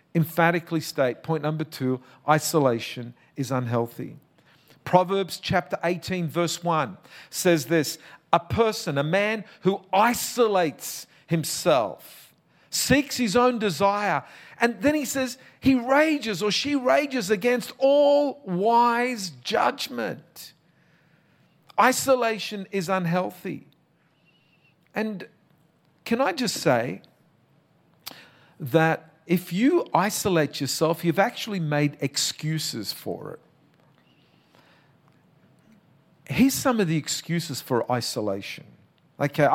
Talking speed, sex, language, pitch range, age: 100 wpm, male, English, 150-210 Hz, 50-69